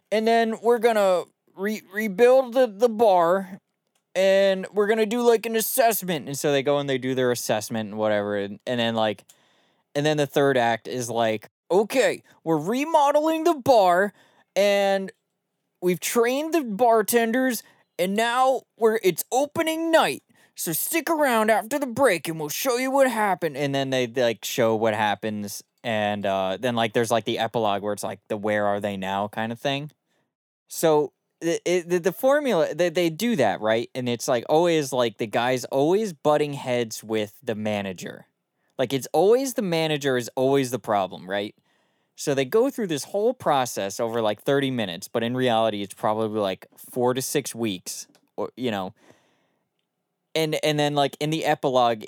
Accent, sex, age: American, male, 20-39